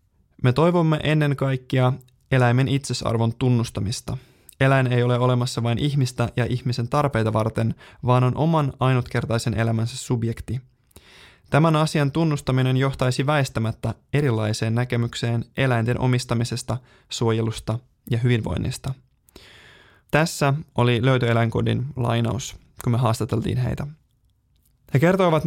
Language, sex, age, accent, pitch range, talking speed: Finnish, male, 20-39, native, 115-135 Hz, 105 wpm